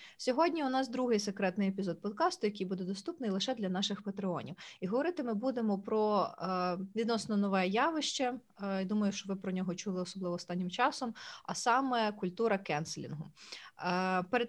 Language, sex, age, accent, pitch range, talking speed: Ukrainian, female, 20-39, native, 175-215 Hz, 150 wpm